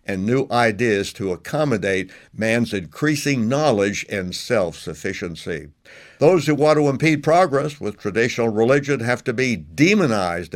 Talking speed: 130 wpm